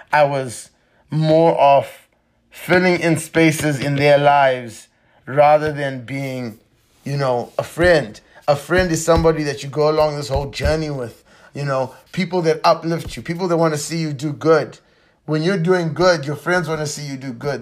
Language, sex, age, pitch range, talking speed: English, male, 30-49, 135-160 Hz, 185 wpm